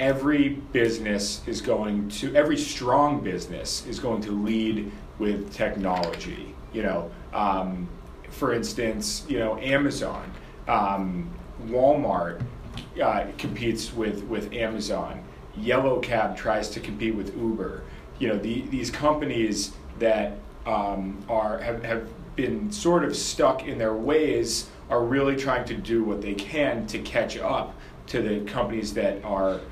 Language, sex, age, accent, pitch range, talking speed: English, male, 30-49, American, 95-115 Hz, 140 wpm